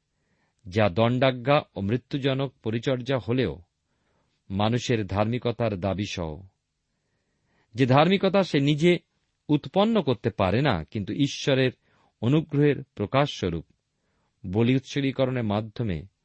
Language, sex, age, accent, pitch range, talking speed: Bengali, male, 40-59, native, 95-145 Hz, 90 wpm